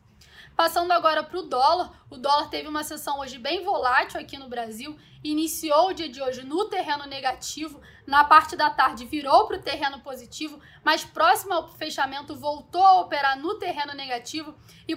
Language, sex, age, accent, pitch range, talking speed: Portuguese, female, 10-29, Brazilian, 275-320 Hz, 175 wpm